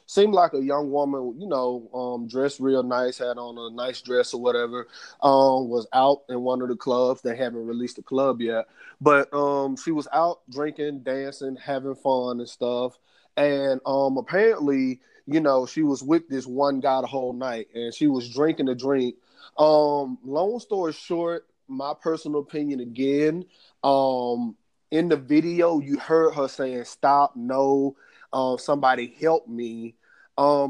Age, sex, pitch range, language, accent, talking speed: 20-39, male, 130-155 Hz, English, American, 170 wpm